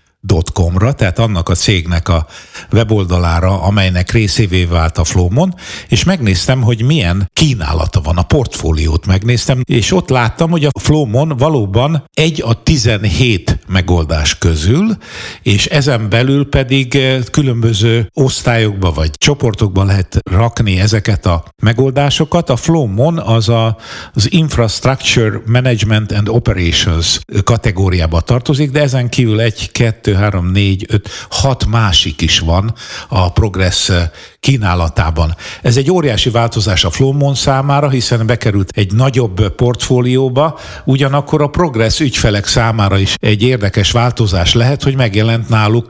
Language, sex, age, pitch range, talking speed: Hungarian, male, 60-79, 95-130 Hz, 125 wpm